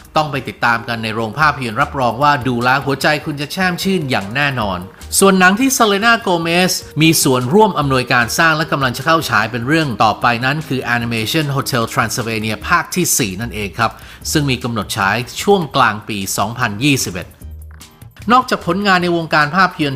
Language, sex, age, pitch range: Thai, male, 30-49, 115-155 Hz